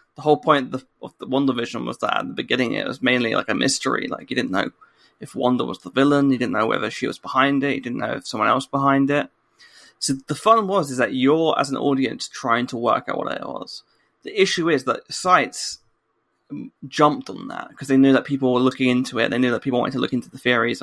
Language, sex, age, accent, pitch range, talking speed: English, male, 20-39, British, 125-150 Hz, 255 wpm